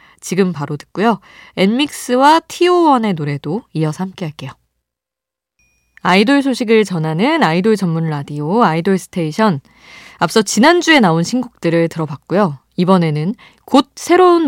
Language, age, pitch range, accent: Korean, 20-39, 155-220 Hz, native